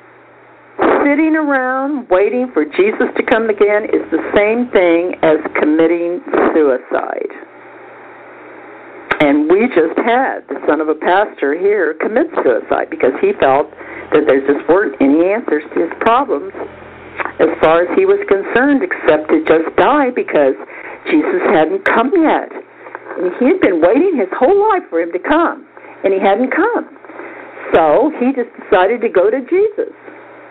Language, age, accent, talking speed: English, 60-79, American, 155 wpm